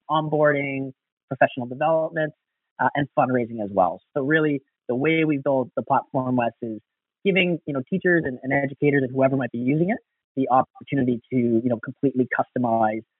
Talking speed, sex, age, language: 175 wpm, male, 30-49, English